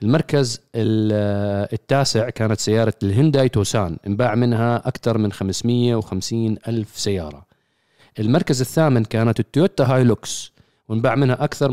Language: Arabic